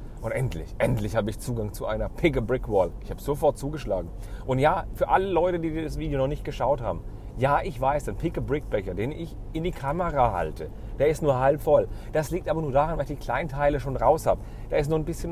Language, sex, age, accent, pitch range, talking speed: German, male, 40-59, German, 115-160 Hz, 245 wpm